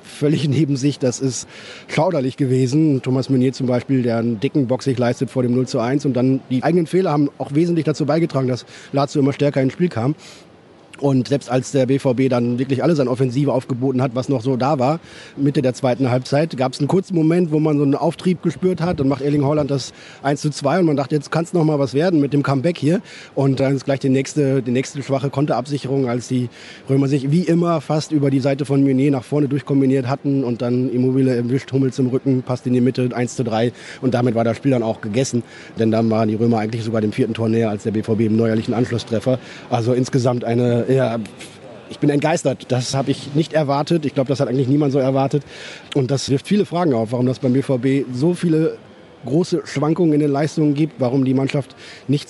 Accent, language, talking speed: German, German, 230 wpm